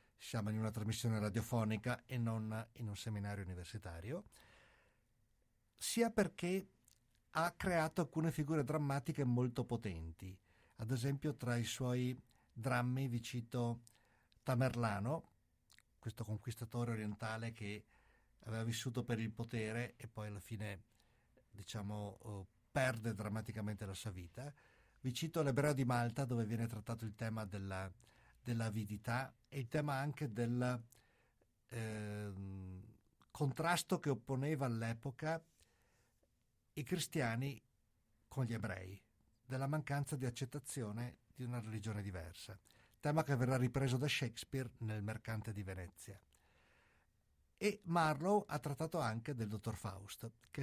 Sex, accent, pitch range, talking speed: male, native, 110-135 Hz, 120 wpm